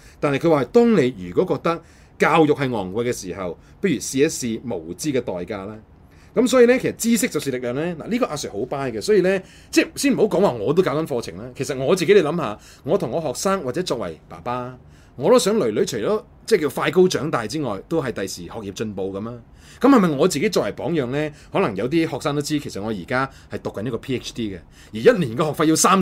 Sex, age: male, 30-49